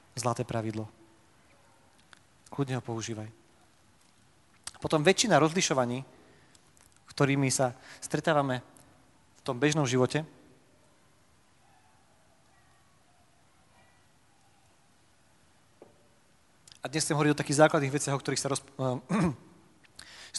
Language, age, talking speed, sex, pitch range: Slovak, 30-49, 75 wpm, male, 120-145 Hz